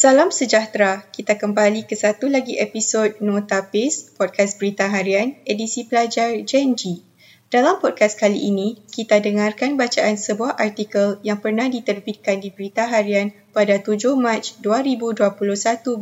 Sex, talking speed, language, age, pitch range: female, 130 wpm, Malay, 20-39, 195-230 Hz